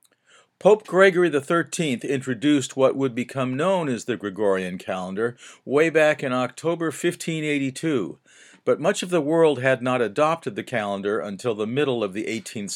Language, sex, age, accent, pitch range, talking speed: English, male, 50-69, American, 120-160 Hz, 155 wpm